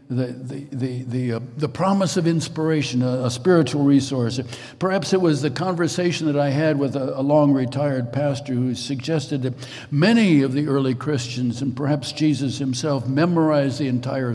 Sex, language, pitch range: male, English, 125-145 Hz